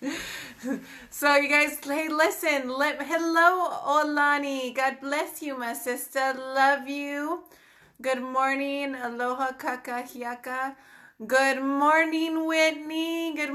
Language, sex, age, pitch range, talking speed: English, female, 30-49, 245-300 Hz, 100 wpm